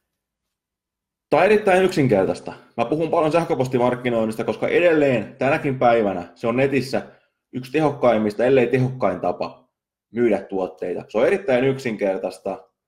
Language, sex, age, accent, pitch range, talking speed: Finnish, male, 20-39, native, 95-125 Hz, 120 wpm